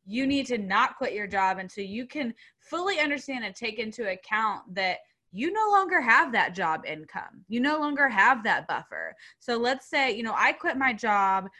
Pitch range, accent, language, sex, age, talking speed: 195-250 Hz, American, English, female, 20-39, 200 wpm